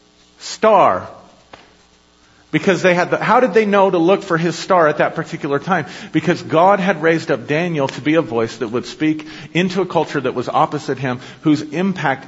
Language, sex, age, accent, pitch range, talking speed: English, male, 50-69, American, 110-165 Hz, 195 wpm